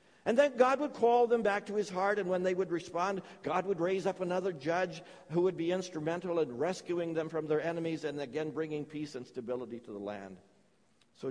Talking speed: 220 wpm